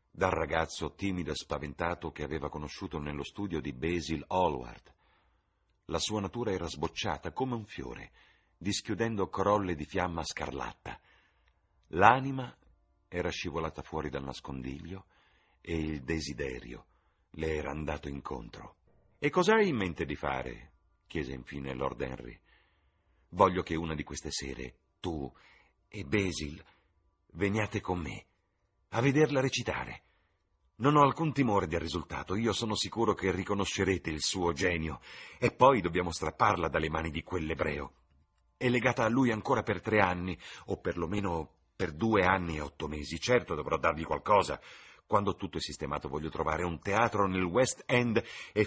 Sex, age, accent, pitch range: male, 50-69, native, 80-110 Hz